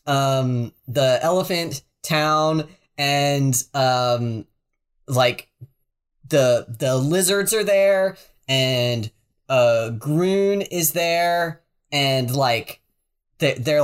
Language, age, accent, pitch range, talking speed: English, 20-39, American, 120-155 Hz, 90 wpm